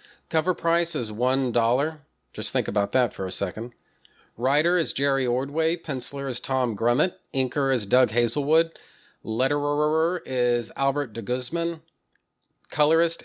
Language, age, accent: English, 40-59, American